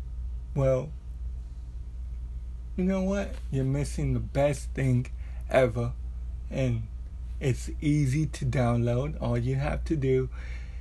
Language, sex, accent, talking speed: English, male, American, 110 wpm